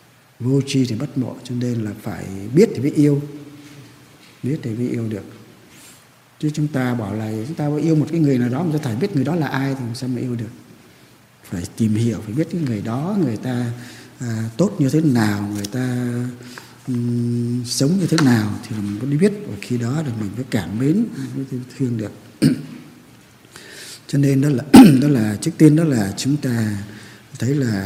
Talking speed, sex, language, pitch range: 205 wpm, male, Vietnamese, 110-140 Hz